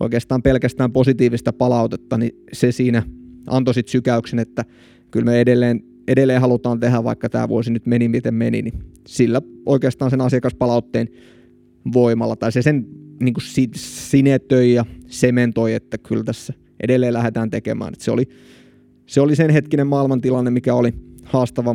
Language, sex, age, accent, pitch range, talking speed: Finnish, male, 20-39, native, 115-130 Hz, 135 wpm